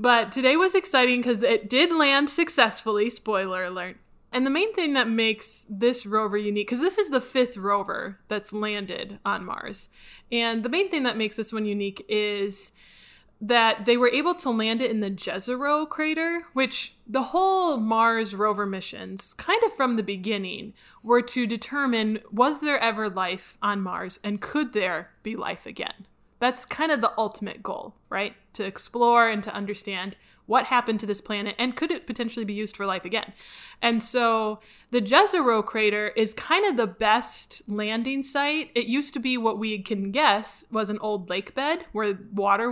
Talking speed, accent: 185 wpm, American